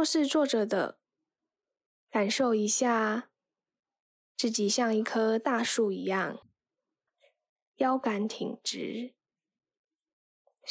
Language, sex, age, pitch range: Chinese, female, 10-29, 210-280 Hz